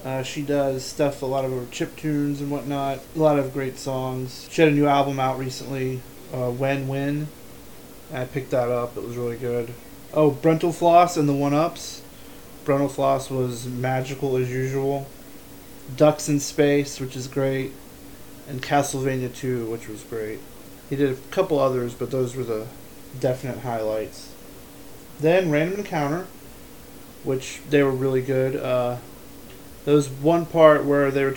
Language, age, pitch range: English, 30-49, 125-145 Hz